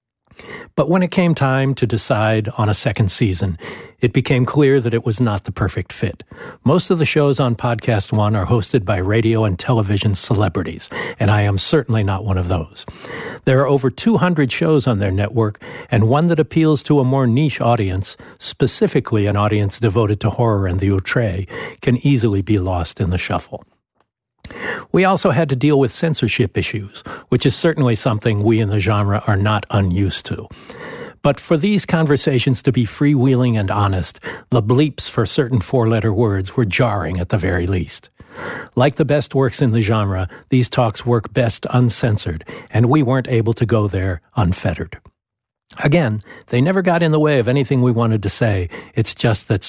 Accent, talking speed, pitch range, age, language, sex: American, 185 wpm, 105-135 Hz, 60-79, English, male